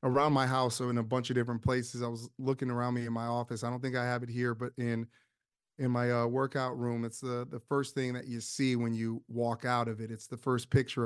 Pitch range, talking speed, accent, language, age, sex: 120-135 Hz, 270 wpm, American, English, 30-49, male